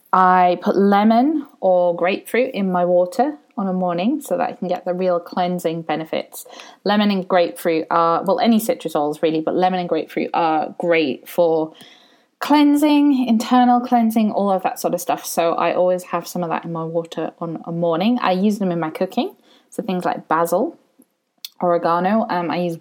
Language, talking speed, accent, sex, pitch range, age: English, 190 wpm, British, female, 170-235 Hz, 20-39